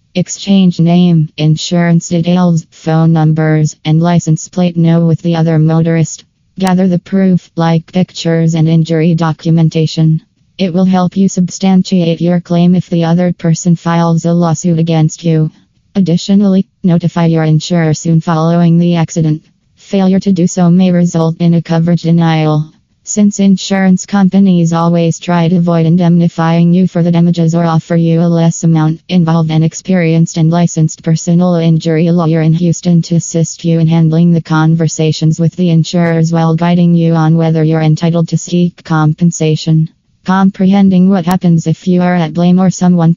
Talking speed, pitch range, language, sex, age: 160 wpm, 160-175 Hz, English, female, 20-39